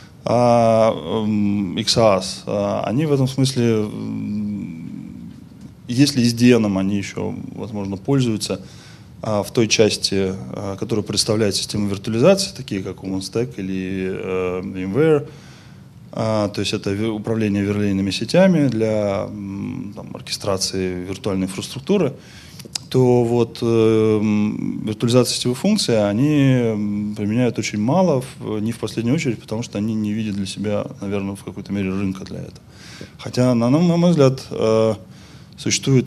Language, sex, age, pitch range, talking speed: Russian, male, 20-39, 100-120 Hz, 115 wpm